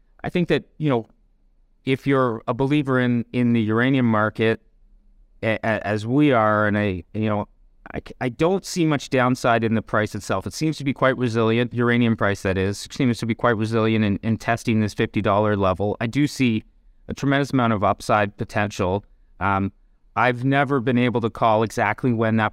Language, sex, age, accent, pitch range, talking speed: English, male, 30-49, American, 110-135 Hz, 195 wpm